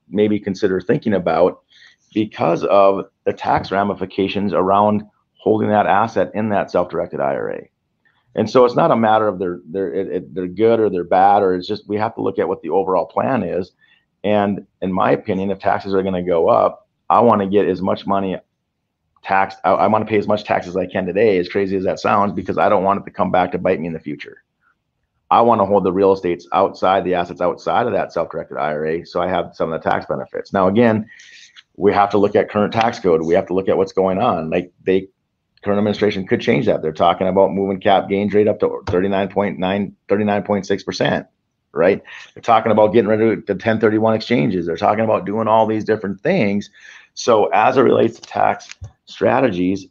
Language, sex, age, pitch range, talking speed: English, male, 40-59, 95-105 Hz, 215 wpm